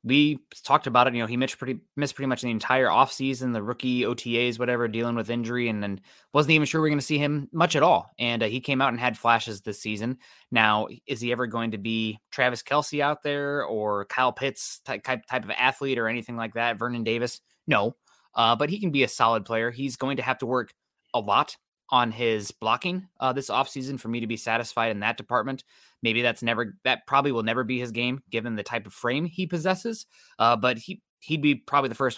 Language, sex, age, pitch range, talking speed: English, male, 20-39, 115-135 Hz, 235 wpm